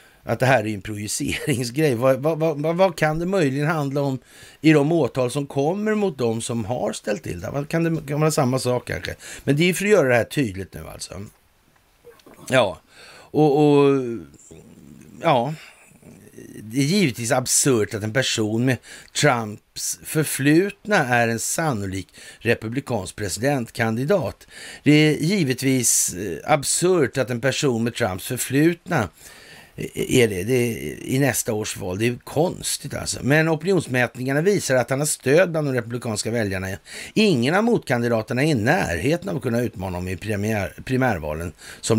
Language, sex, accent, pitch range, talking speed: Swedish, male, native, 110-150 Hz, 165 wpm